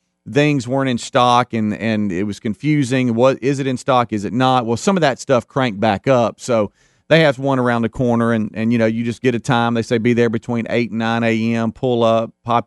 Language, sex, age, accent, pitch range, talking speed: English, male, 40-59, American, 115-150 Hz, 250 wpm